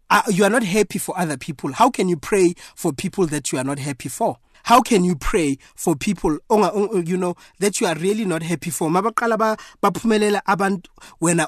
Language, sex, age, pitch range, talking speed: English, male, 30-49, 145-185 Hz, 210 wpm